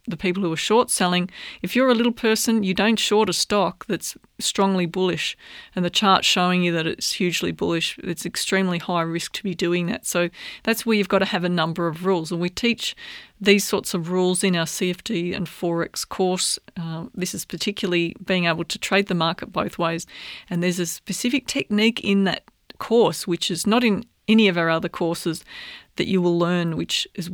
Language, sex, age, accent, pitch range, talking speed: English, female, 30-49, Australian, 175-210 Hz, 210 wpm